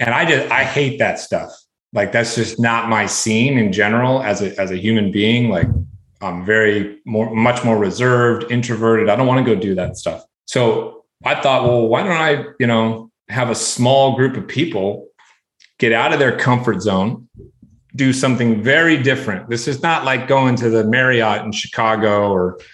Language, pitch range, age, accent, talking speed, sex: English, 110-130 Hz, 30-49, American, 190 wpm, male